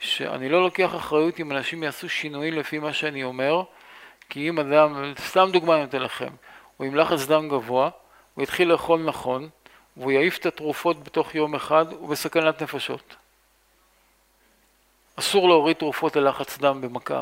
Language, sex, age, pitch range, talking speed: Hebrew, male, 50-69, 135-165 Hz, 155 wpm